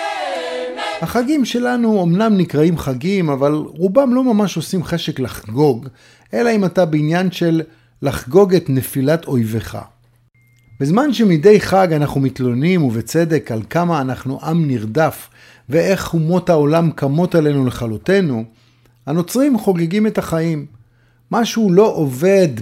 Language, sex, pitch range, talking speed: Hebrew, male, 125-180 Hz, 120 wpm